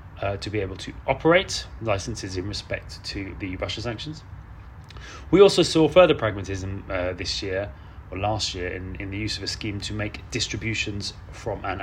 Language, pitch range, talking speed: English, 90-110 Hz, 185 wpm